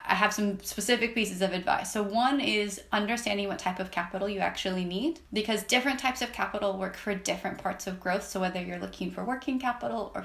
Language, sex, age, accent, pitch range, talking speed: English, female, 20-39, American, 190-225 Hz, 215 wpm